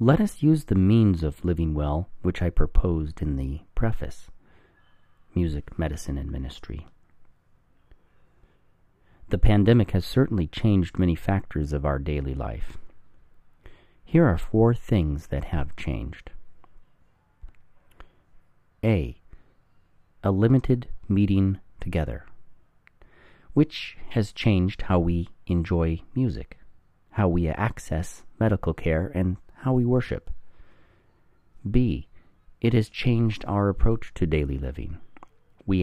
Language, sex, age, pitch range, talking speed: English, male, 40-59, 80-105 Hz, 110 wpm